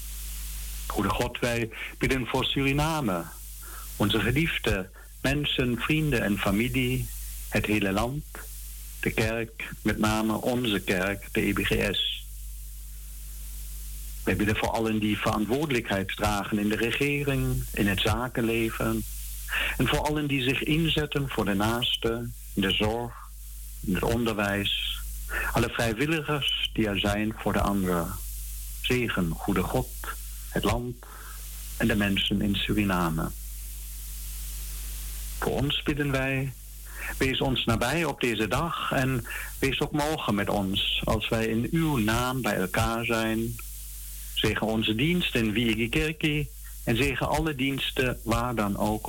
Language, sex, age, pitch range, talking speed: Dutch, male, 60-79, 90-125 Hz, 130 wpm